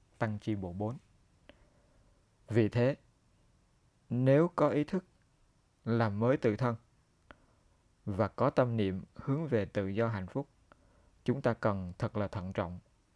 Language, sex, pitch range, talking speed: Vietnamese, male, 105-125 Hz, 140 wpm